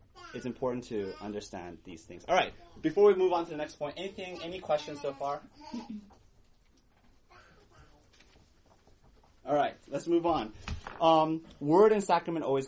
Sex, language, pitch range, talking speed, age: male, English, 125-175 Hz, 145 wpm, 30-49